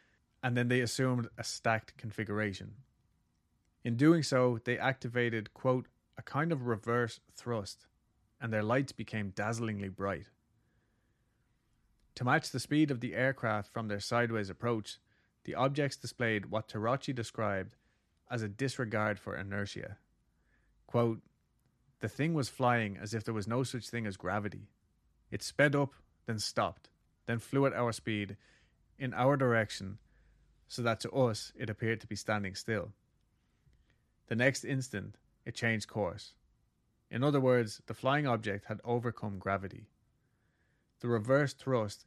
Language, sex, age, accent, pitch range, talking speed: English, male, 30-49, Irish, 105-125 Hz, 145 wpm